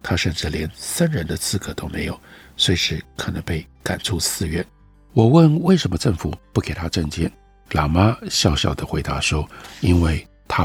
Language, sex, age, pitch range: Chinese, male, 50-69, 80-115 Hz